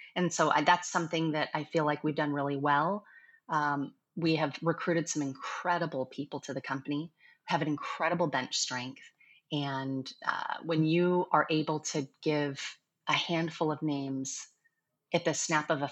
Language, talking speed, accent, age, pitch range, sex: English, 170 wpm, American, 30-49, 145-170 Hz, female